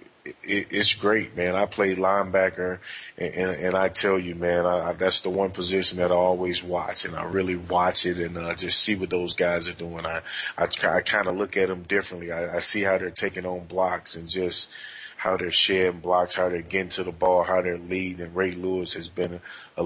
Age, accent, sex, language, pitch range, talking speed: 30-49, American, male, English, 90-95 Hz, 200 wpm